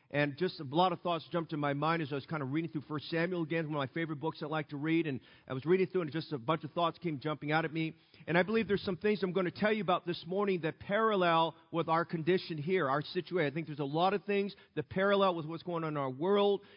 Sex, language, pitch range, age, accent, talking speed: male, English, 155-190 Hz, 40-59, American, 295 wpm